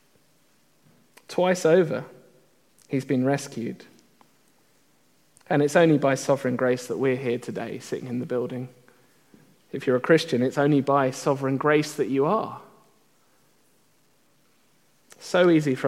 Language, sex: English, male